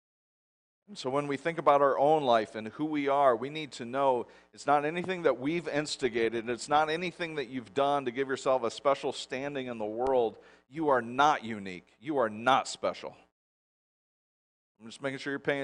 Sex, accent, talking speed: male, American, 195 wpm